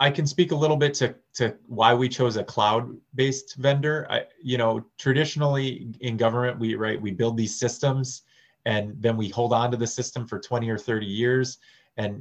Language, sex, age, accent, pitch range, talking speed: English, male, 30-49, American, 105-130 Hz, 195 wpm